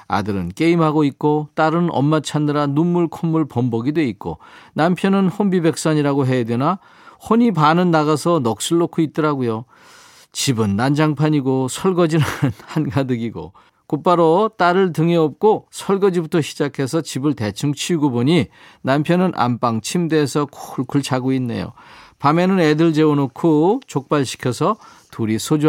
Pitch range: 125-165 Hz